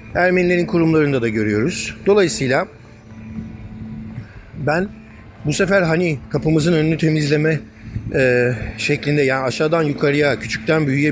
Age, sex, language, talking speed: 50-69, male, Turkish, 105 wpm